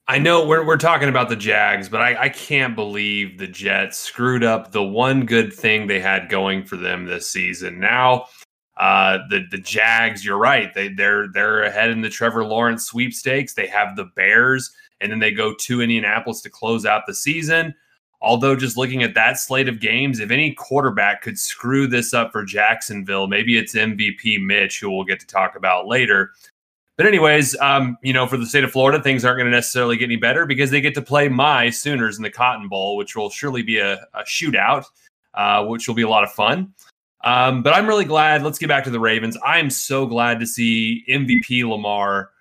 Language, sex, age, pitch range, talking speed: English, male, 20-39, 110-135 Hz, 210 wpm